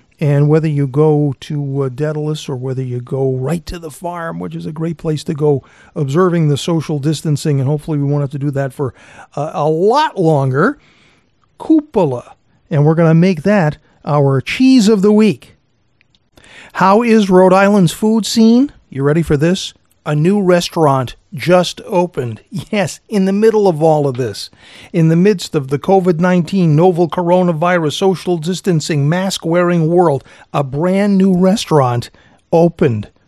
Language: English